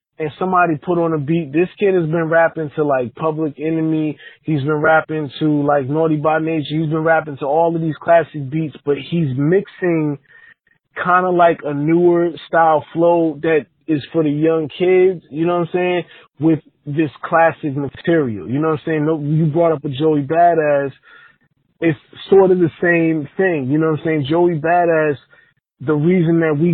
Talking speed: 195 wpm